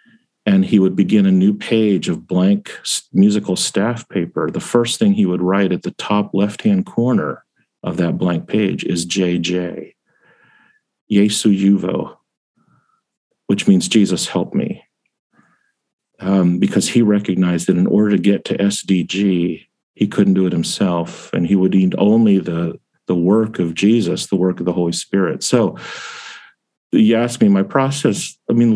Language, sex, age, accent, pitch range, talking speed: English, male, 50-69, American, 90-110 Hz, 160 wpm